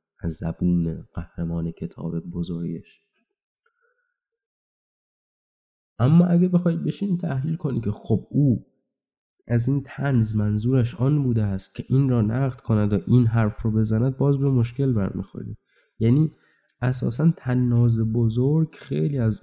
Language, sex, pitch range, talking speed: Persian, male, 95-135 Hz, 130 wpm